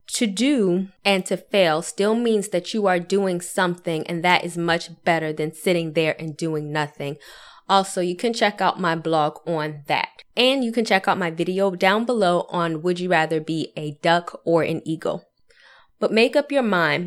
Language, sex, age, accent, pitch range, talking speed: English, female, 20-39, American, 160-190 Hz, 195 wpm